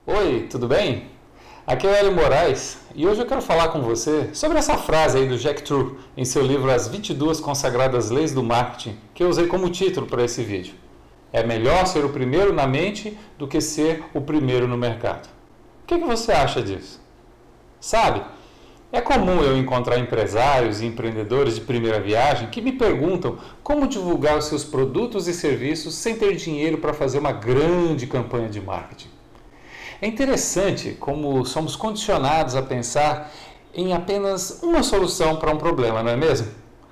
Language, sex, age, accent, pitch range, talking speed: Portuguese, male, 40-59, Brazilian, 125-180 Hz, 175 wpm